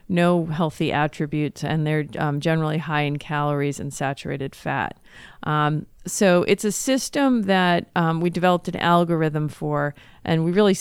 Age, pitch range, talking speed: 40-59, 155-180 Hz, 155 wpm